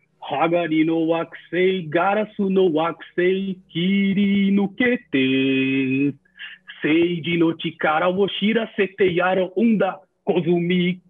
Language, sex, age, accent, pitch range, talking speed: Portuguese, male, 40-59, Brazilian, 175-260 Hz, 80 wpm